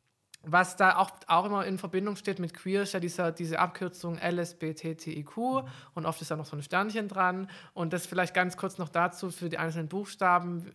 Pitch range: 160-180 Hz